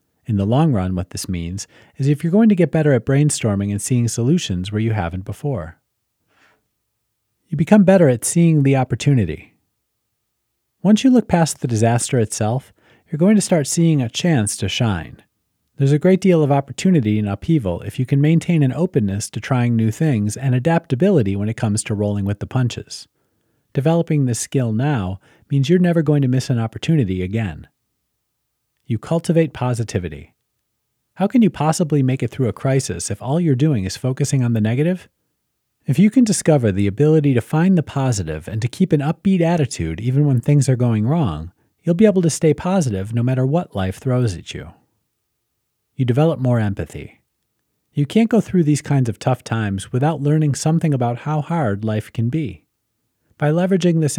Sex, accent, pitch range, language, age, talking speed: male, American, 110-155 Hz, English, 40-59, 185 wpm